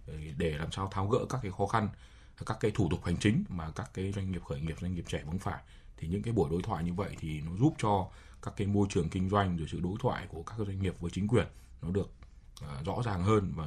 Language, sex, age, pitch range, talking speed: Vietnamese, male, 20-39, 85-105 Hz, 270 wpm